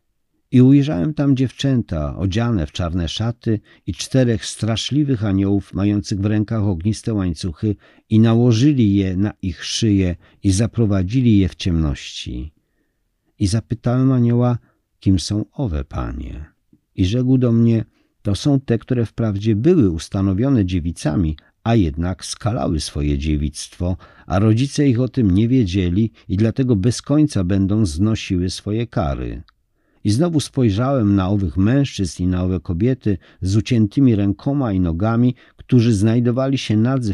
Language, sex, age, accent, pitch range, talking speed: Polish, male, 50-69, native, 90-120 Hz, 140 wpm